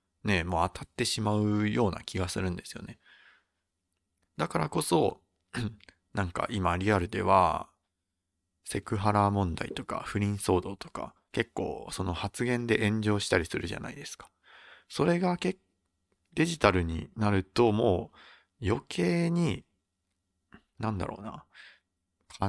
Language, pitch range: Japanese, 90-110 Hz